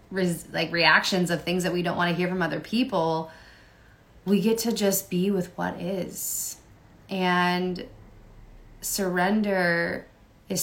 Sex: female